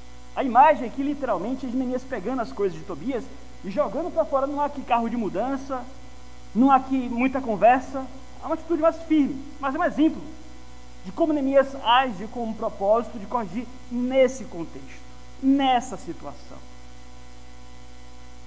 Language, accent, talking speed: Portuguese, Brazilian, 170 wpm